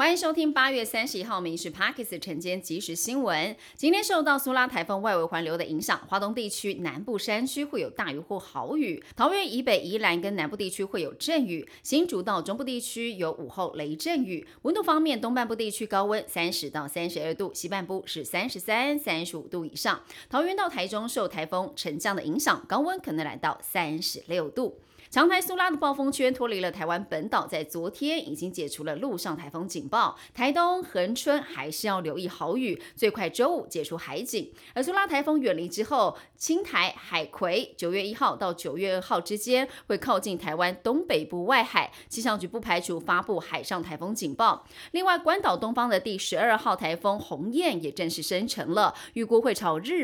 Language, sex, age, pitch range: Chinese, female, 30-49, 175-280 Hz